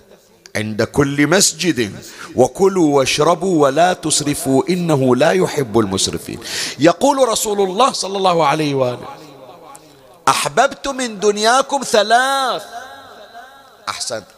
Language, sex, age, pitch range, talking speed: Arabic, male, 40-59, 145-215 Hz, 95 wpm